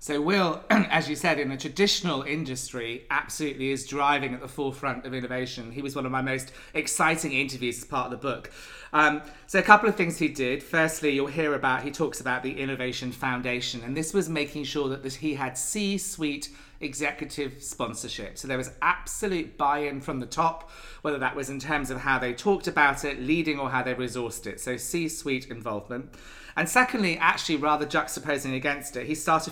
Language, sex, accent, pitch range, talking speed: English, male, British, 130-160 Hz, 195 wpm